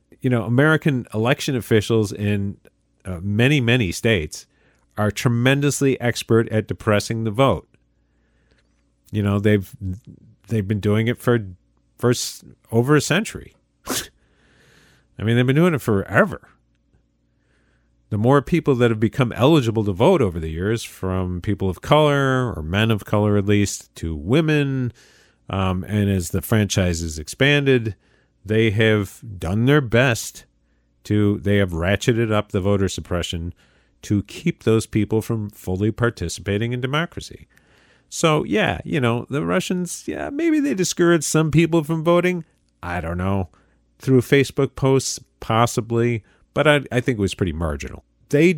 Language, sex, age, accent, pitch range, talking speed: English, male, 40-59, American, 95-130 Hz, 145 wpm